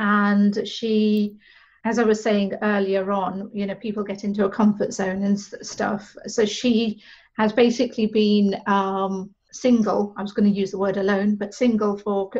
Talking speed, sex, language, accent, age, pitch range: 175 wpm, female, English, British, 40-59, 200-225 Hz